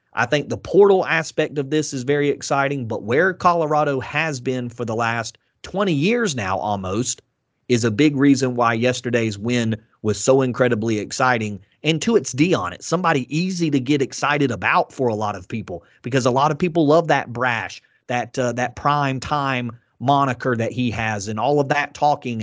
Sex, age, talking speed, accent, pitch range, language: male, 30-49, 195 wpm, American, 120-155 Hz, English